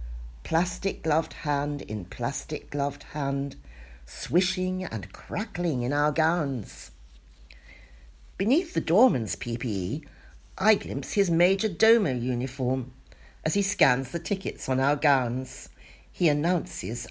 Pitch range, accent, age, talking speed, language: 115-170 Hz, British, 60-79, 110 wpm, English